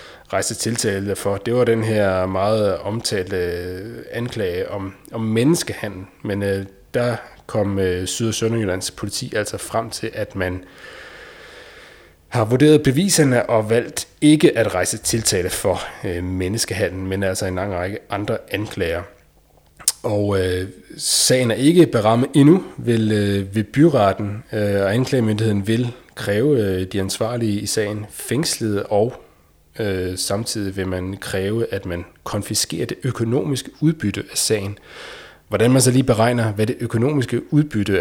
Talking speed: 140 wpm